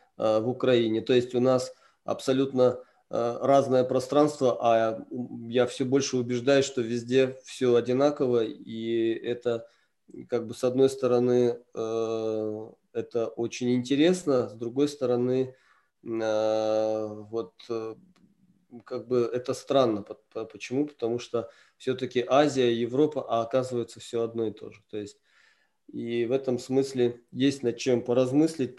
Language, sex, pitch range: Russian, male, 115-130 Hz